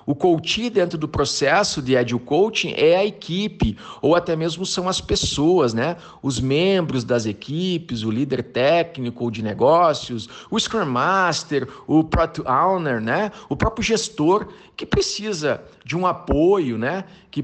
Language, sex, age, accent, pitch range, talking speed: Portuguese, male, 50-69, Brazilian, 145-195 Hz, 155 wpm